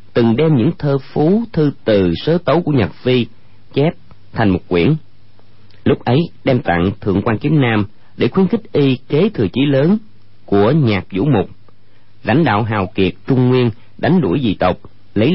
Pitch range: 100-140 Hz